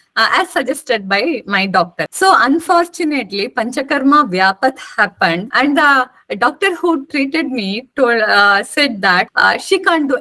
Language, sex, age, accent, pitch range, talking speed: English, female, 20-39, Indian, 200-275 Hz, 140 wpm